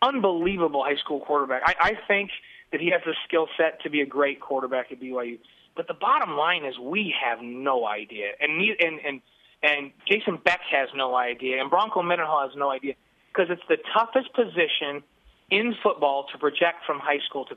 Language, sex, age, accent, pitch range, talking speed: English, male, 30-49, American, 150-200 Hz, 195 wpm